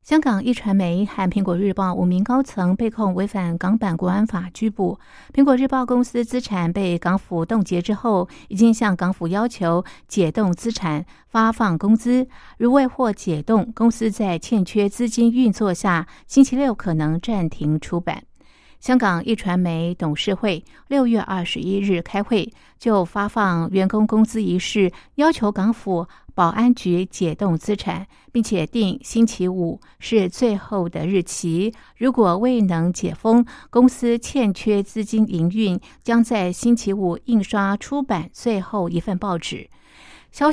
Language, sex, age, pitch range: Chinese, female, 50-69, 180-230 Hz